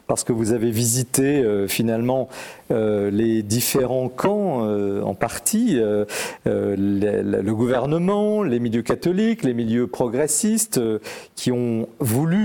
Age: 40-59